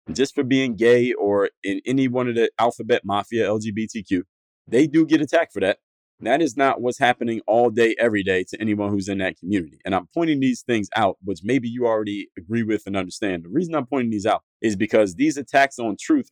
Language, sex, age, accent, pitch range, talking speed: English, male, 30-49, American, 100-125 Hz, 220 wpm